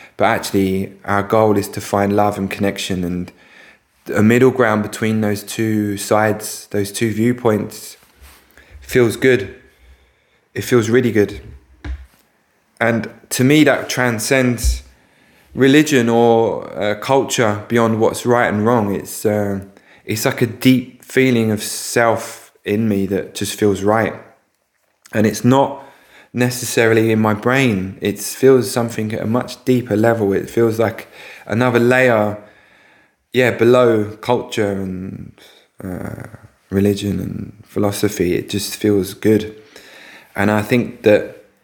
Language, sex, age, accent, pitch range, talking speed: English, male, 20-39, British, 100-120 Hz, 135 wpm